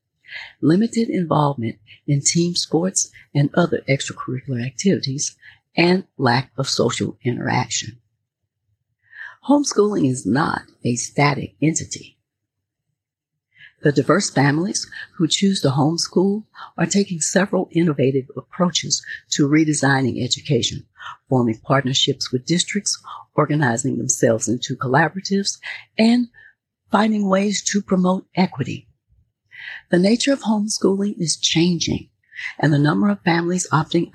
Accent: American